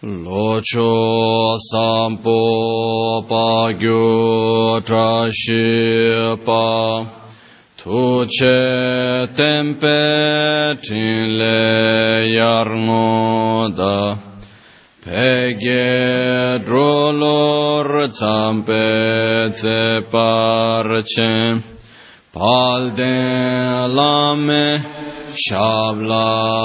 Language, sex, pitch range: Italian, male, 110-130 Hz